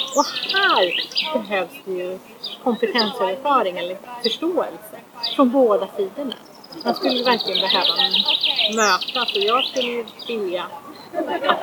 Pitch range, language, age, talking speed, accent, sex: 190-265 Hz, Swedish, 30-49, 110 wpm, native, female